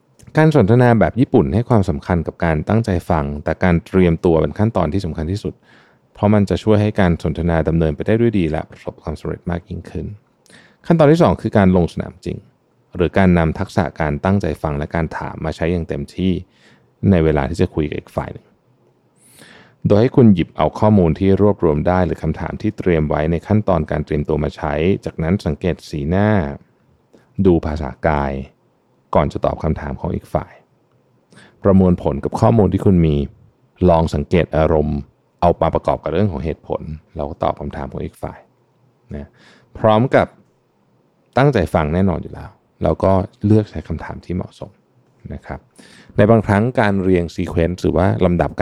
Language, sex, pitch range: Thai, male, 75-100 Hz